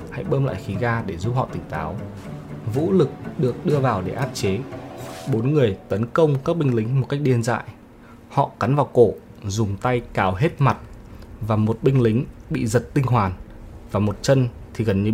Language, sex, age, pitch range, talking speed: Vietnamese, male, 20-39, 100-130 Hz, 205 wpm